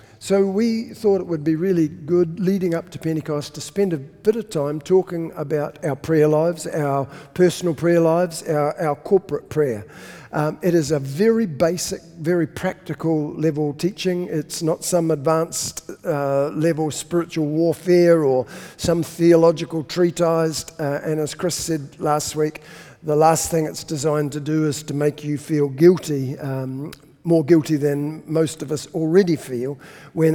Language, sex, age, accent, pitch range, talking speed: English, male, 50-69, Australian, 145-170 Hz, 165 wpm